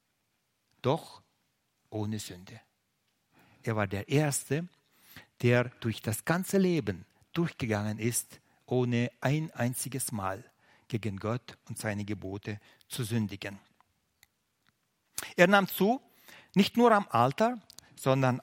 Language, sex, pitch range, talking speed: German, male, 115-150 Hz, 105 wpm